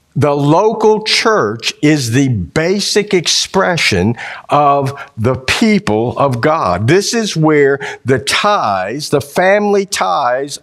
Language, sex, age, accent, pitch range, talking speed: English, male, 50-69, American, 135-185 Hz, 115 wpm